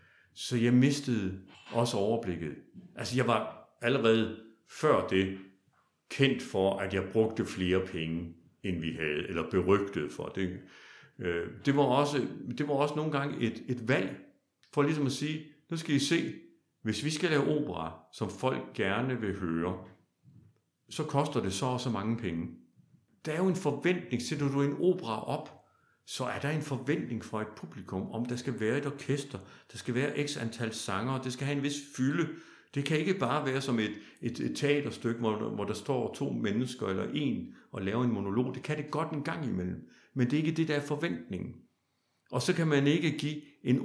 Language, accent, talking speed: Danish, native, 200 wpm